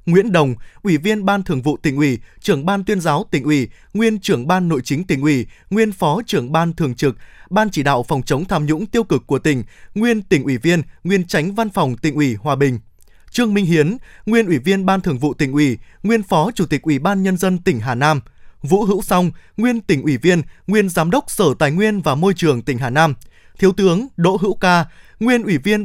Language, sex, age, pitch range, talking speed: Vietnamese, male, 20-39, 145-200 Hz, 230 wpm